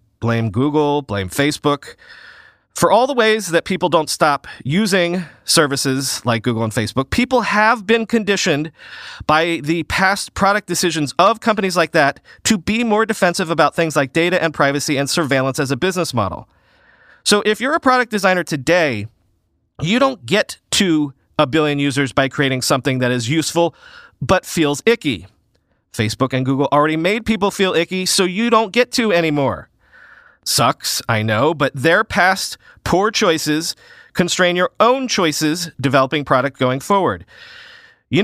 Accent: American